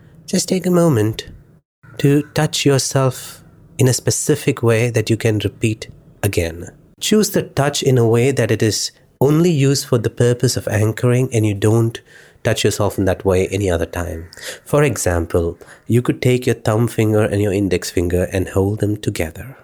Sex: male